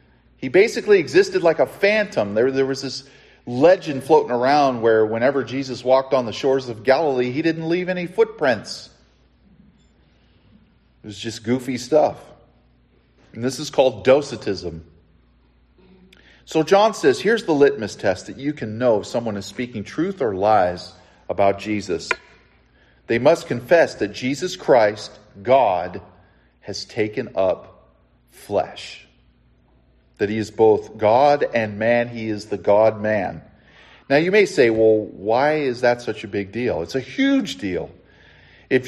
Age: 40-59